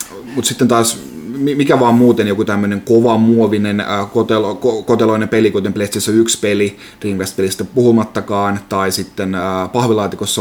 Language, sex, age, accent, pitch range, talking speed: Finnish, male, 30-49, native, 95-115 Hz, 140 wpm